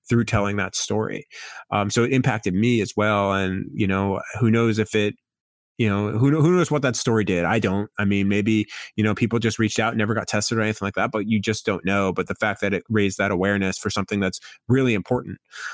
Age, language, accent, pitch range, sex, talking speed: 30-49, English, American, 100-115 Hz, male, 245 wpm